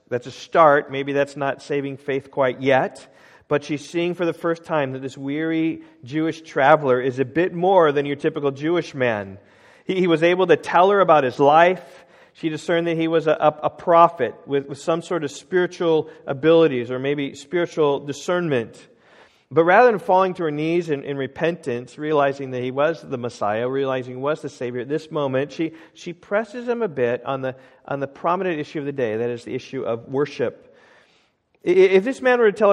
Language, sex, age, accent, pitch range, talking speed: English, male, 40-59, American, 140-175 Hz, 200 wpm